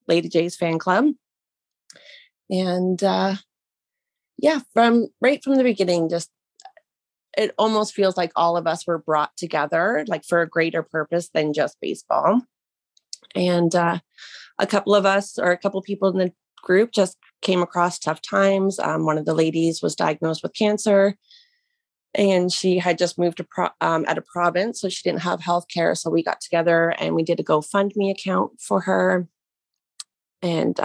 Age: 30-49